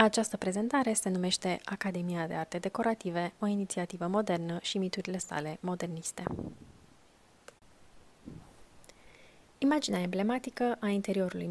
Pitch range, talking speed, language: 180-215 Hz, 100 wpm, Romanian